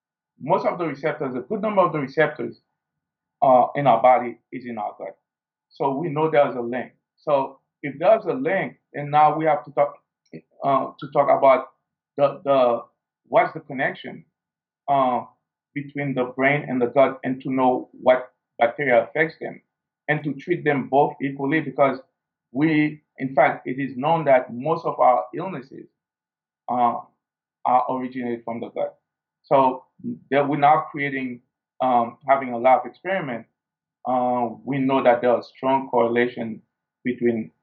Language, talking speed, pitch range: English, 165 wpm, 120-145 Hz